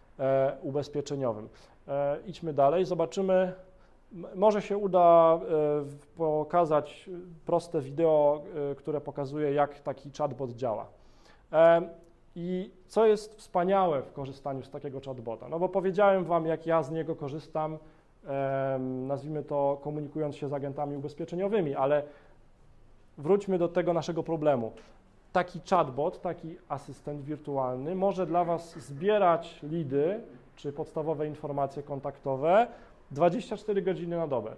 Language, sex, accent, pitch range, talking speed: Polish, male, native, 140-170 Hz, 115 wpm